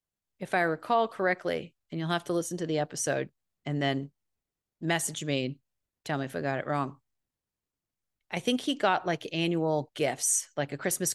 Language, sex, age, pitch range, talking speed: English, female, 40-59, 145-180 Hz, 180 wpm